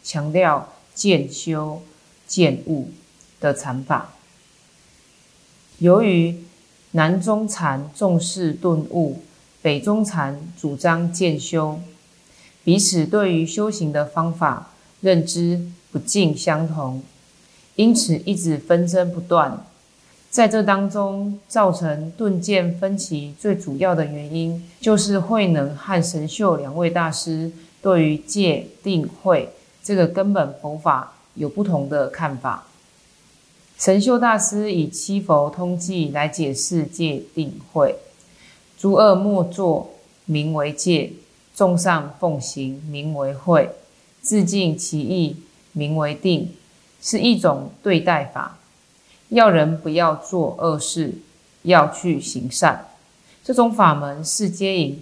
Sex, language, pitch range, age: female, Chinese, 155-190 Hz, 30-49